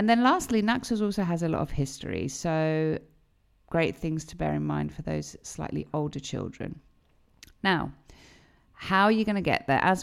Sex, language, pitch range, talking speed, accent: female, Greek, 155-185 Hz, 185 wpm, British